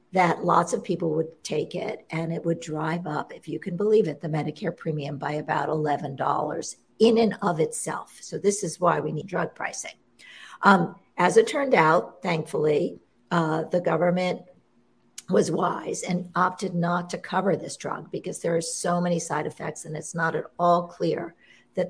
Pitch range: 155-180 Hz